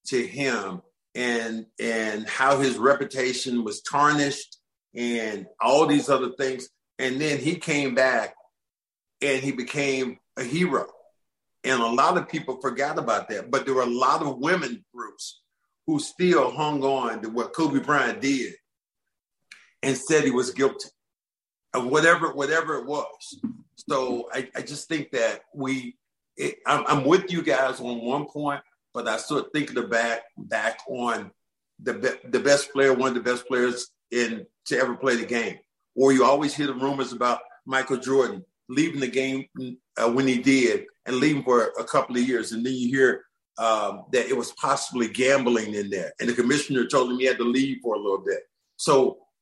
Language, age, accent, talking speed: English, 50-69, American, 180 wpm